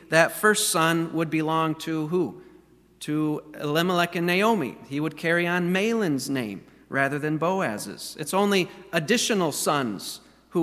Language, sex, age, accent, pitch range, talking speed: English, male, 40-59, American, 150-180 Hz, 140 wpm